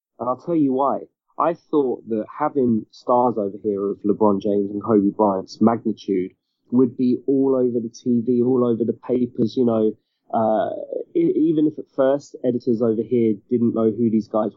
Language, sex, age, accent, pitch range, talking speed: English, male, 20-39, British, 110-130 Hz, 180 wpm